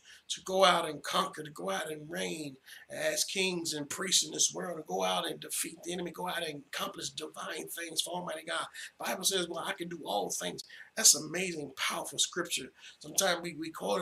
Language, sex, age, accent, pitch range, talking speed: English, male, 30-49, American, 130-170 Hz, 210 wpm